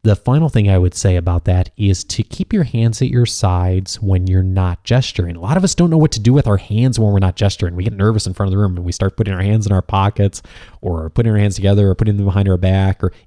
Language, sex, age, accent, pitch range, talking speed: English, male, 30-49, American, 95-120 Hz, 295 wpm